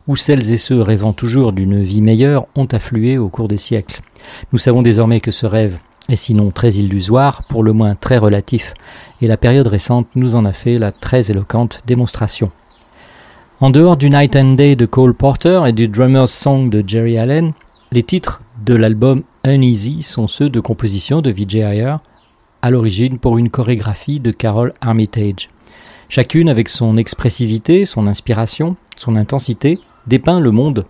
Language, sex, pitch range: French, male, 110-130 Hz